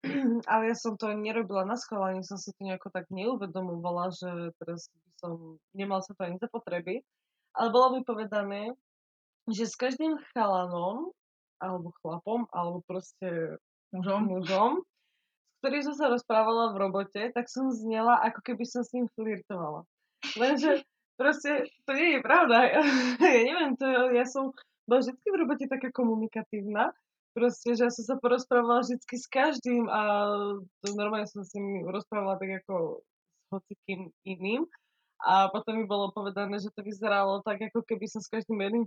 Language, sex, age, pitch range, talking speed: Slovak, female, 20-39, 195-250 Hz, 160 wpm